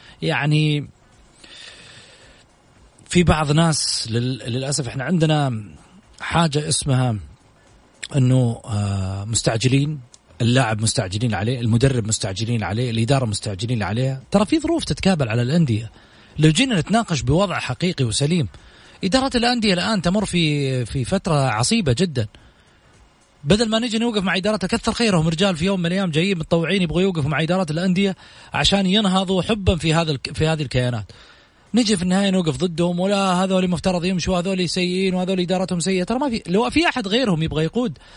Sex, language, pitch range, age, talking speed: male, English, 130-195 Hz, 30-49, 145 wpm